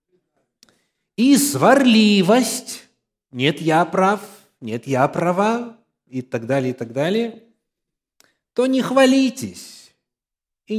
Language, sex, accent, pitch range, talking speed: Russian, male, native, 130-210 Hz, 100 wpm